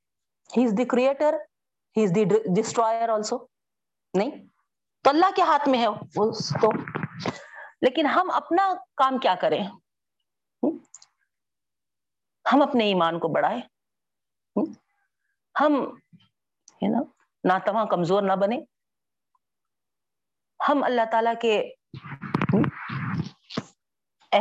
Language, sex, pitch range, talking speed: Urdu, female, 195-270 Hz, 85 wpm